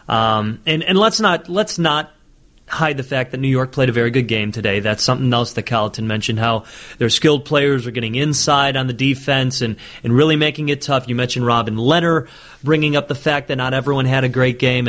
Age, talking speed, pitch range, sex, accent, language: 30-49, 225 wpm, 115-140 Hz, male, American, English